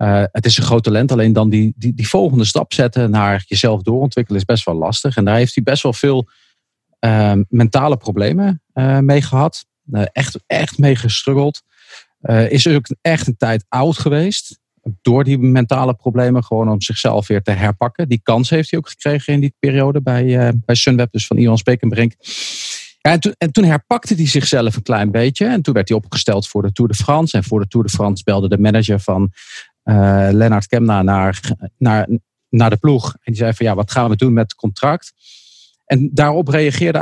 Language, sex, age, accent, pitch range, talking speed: English, male, 40-59, Dutch, 105-135 Hz, 200 wpm